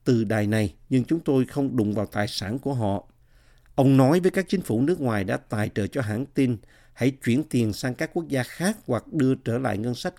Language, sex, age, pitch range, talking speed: Vietnamese, male, 50-69, 110-140 Hz, 240 wpm